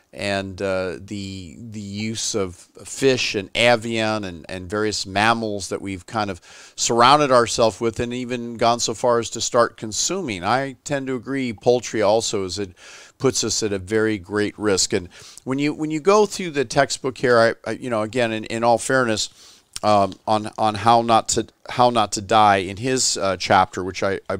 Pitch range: 105-130 Hz